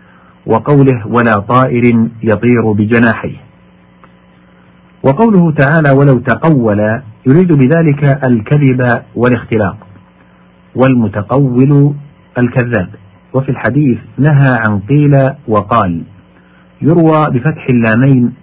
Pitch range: 105-135 Hz